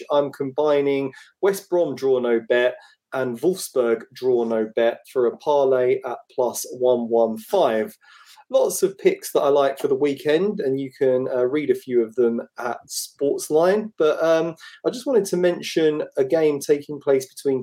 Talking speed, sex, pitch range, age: 175 wpm, male, 120-185 Hz, 30-49